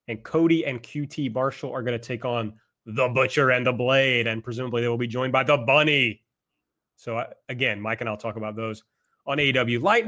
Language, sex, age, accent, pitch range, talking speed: English, male, 30-49, American, 125-160 Hz, 220 wpm